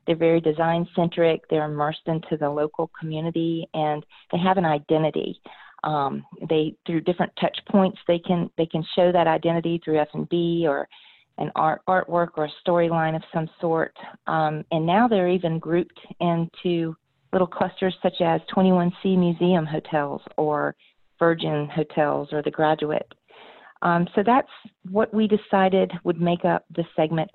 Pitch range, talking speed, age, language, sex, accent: 160-190 Hz, 160 wpm, 40-59, English, female, American